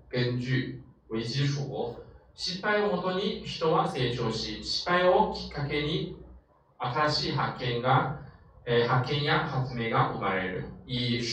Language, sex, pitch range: Chinese, male, 105-150 Hz